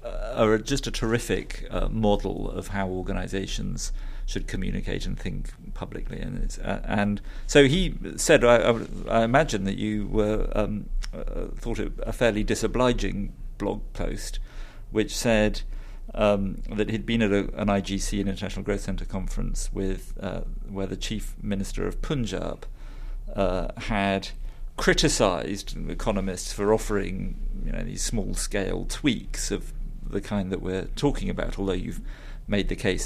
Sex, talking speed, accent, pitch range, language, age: male, 150 wpm, British, 100-115 Hz, English, 50-69